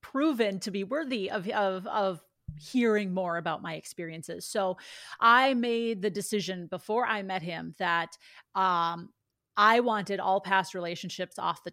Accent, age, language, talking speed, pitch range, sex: American, 30-49, English, 155 wpm, 175-210 Hz, female